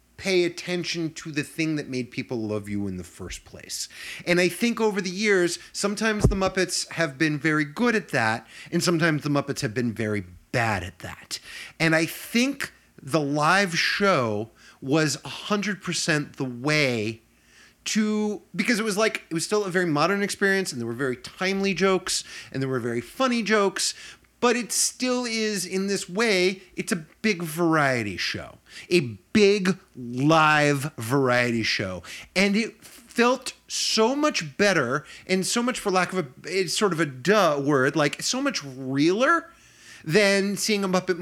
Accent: American